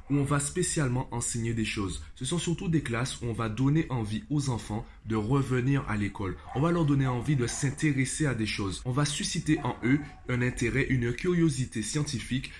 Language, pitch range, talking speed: French, 110-145 Hz, 205 wpm